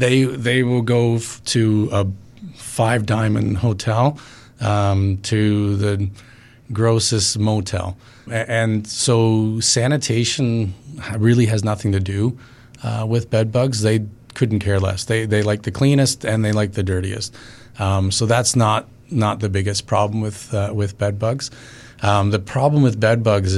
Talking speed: 150 wpm